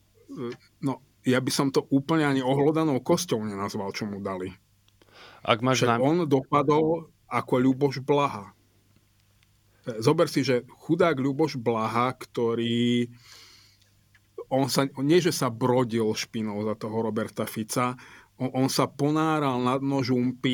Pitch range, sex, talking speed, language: 115-140 Hz, male, 130 wpm, Slovak